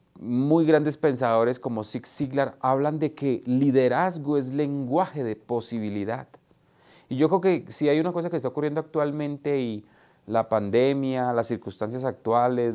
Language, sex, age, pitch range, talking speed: Spanish, male, 30-49, 120-155 Hz, 150 wpm